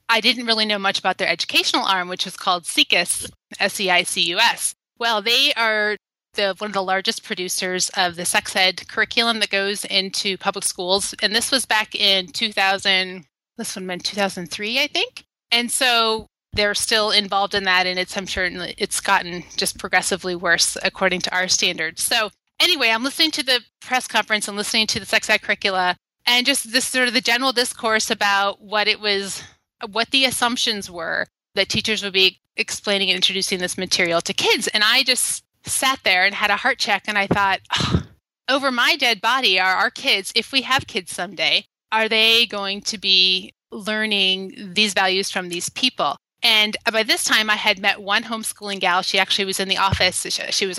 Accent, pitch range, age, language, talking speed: American, 190-230 Hz, 30-49, English, 190 wpm